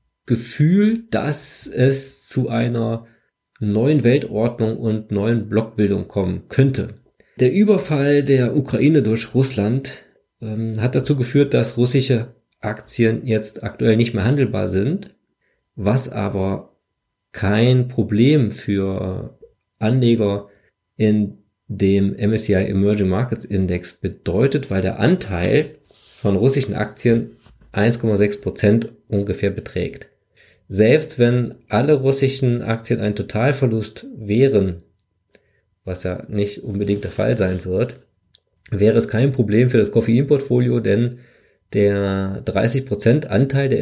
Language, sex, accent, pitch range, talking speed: German, male, German, 100-125 Hz, 110 wpm